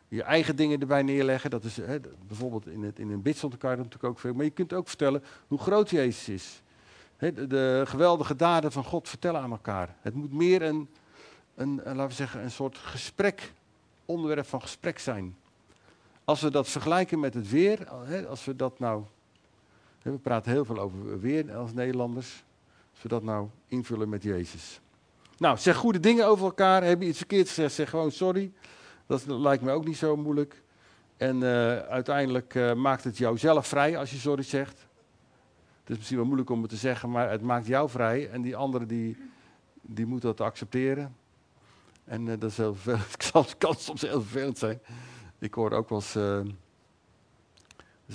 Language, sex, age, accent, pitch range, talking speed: English, male, 50-69, Dutch, 110-145 Hz, 180 wpm